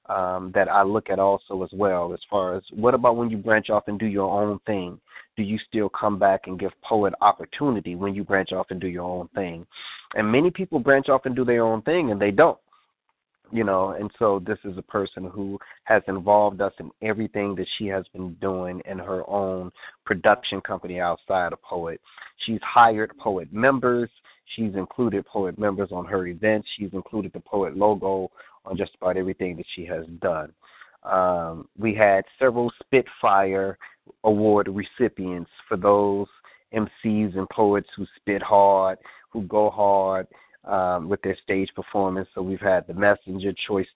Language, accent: English, American